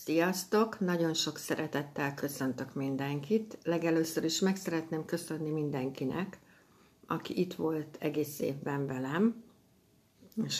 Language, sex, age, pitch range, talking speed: Hungarian, female, 60-79, 145-180 Hz, 110 wpm